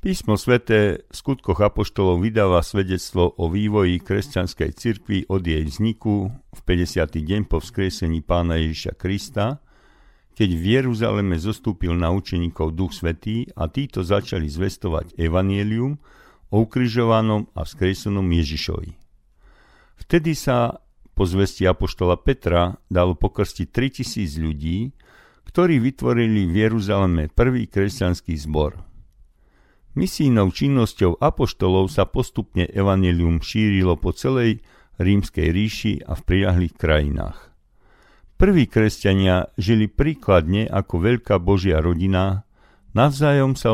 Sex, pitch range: male, 90-110 Hz